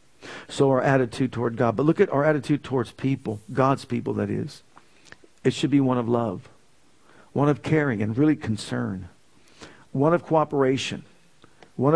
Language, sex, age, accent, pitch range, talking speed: English, male, 50-69, American, 120-155 Hz, 160 wpm